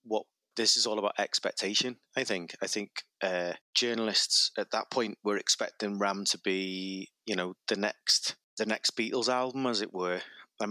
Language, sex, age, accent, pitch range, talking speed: English, male, 30-49, British, 105-125 Hz, 180 wpm